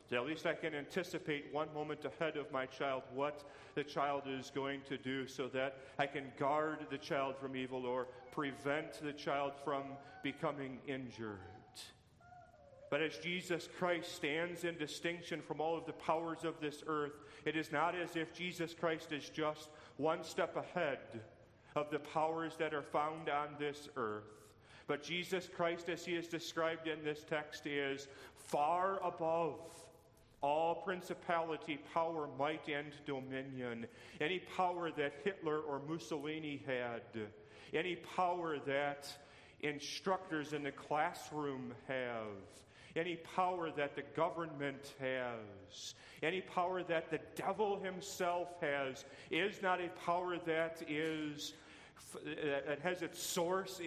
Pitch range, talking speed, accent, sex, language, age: 140-165 Hz, 140 wpm, American, male, English, 40-59